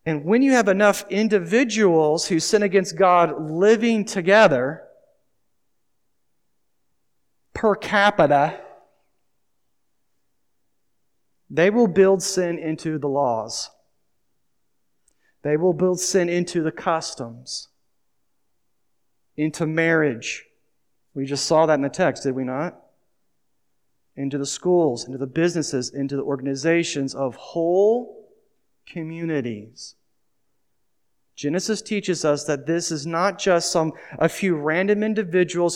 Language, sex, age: English, male, 40-59